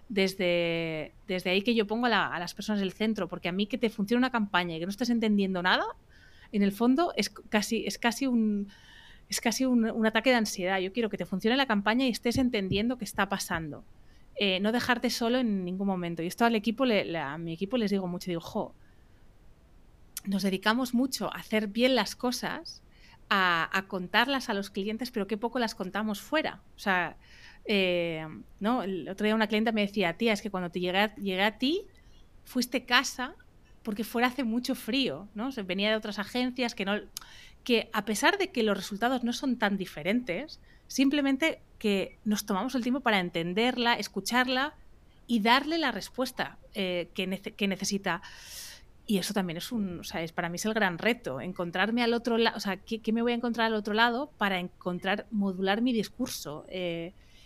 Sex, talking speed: female, 205 wpm